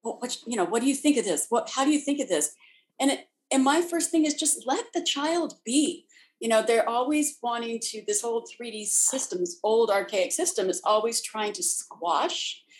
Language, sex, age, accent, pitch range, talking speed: English, female, 50-69, American, 190-305 Hz, 225 wpm